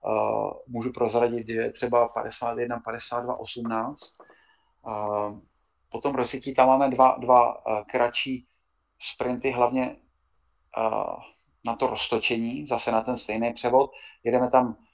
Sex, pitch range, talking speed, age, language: male, 115-130 Hz, 125 wpm, 30-49, Czech